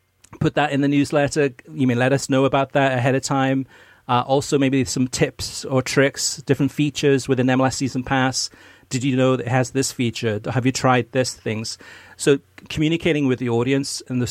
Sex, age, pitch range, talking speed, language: male, 40-59, 120-140 Hz, 200 wpm, English